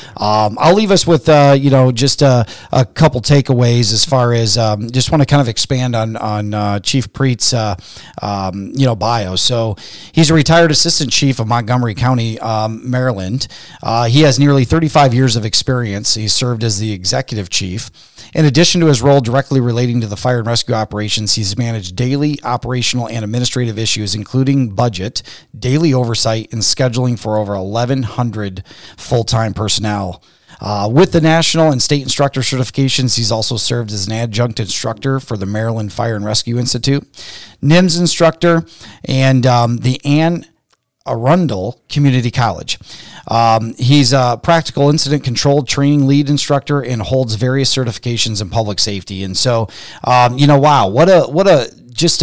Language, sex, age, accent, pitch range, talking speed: English, male, 30-49, American, 110-140 Hz, 170 wpm